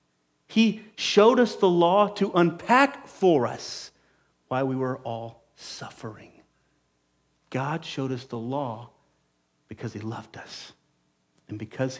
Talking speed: 125 wpm